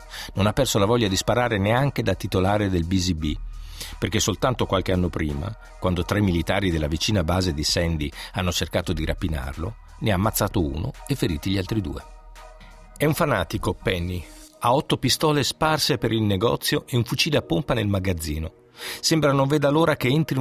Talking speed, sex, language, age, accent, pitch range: 180 wpm, male, Italian, 50-69, native, 90-130 Hz